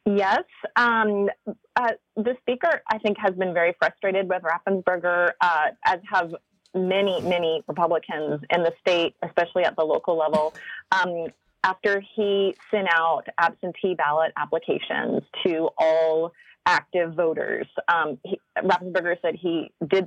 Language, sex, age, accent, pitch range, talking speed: English, female, 30-49, American, 165-205 Hz, 130 wpm